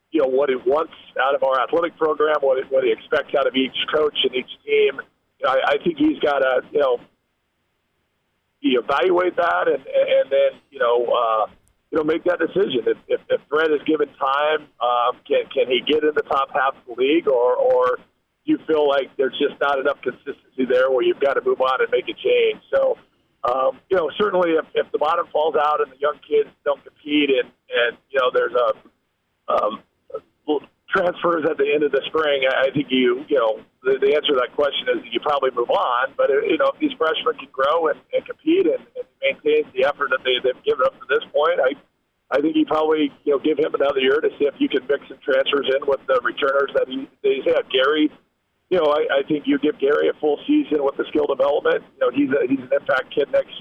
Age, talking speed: 40-59, 235 wpm